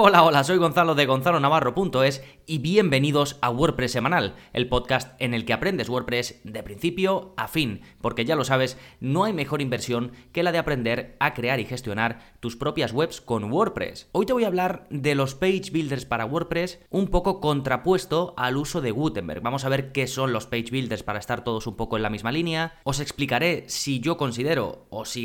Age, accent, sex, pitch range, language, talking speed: 20-39, Spanish, male, 120-155 Hz, Spanish, 200 wpm